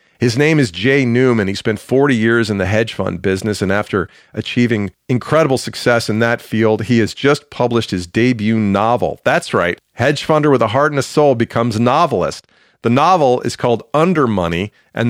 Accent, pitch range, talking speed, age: American, 105-125 Hz, 195 wpm, 40-59